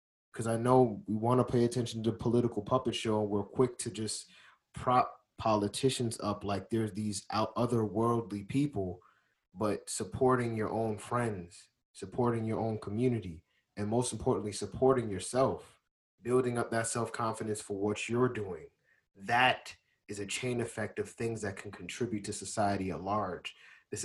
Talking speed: 150 wpm